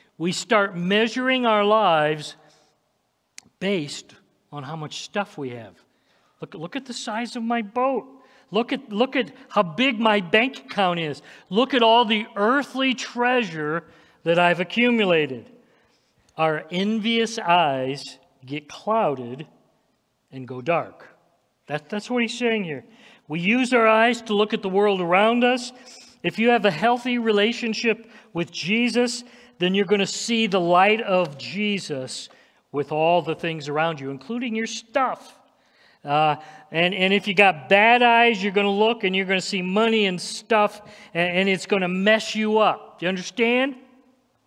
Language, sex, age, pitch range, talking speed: English, male, 50-69, 165-225 Hz, 165 wpm